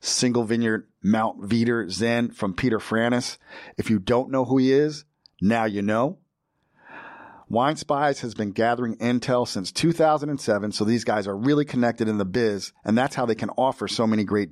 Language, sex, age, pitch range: English, male, 40-59, 110-140 Hz